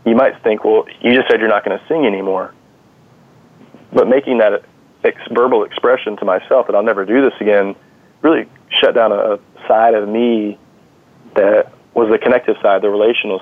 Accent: American